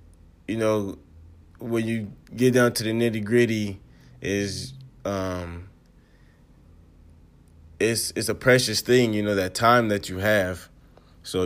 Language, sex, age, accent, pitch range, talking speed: English, male, 20-39, American, 85-110 Hz, 130 wpm